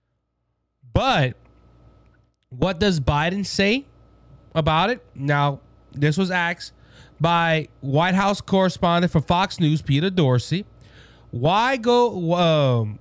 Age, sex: 30-49, male